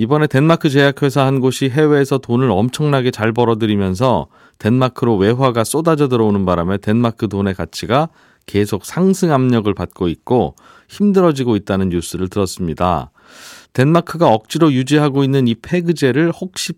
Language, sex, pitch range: Korean, male, 110-150 Hz